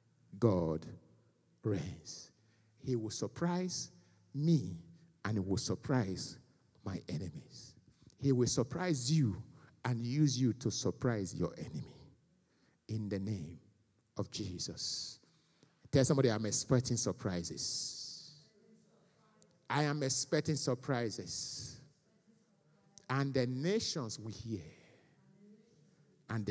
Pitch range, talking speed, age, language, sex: 110-170 Hz, 95 wpm, 50-69, English, male